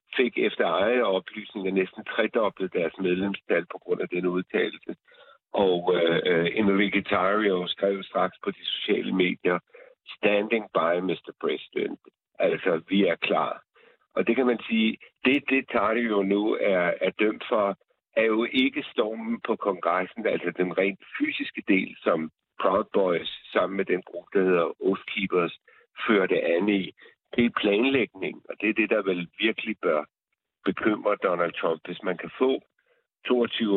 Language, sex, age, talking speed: Danish, male, 60-79, 160 wpm